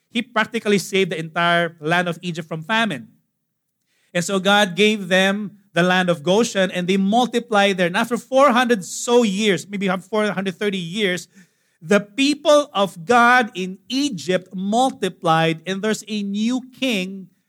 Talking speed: 150 wpm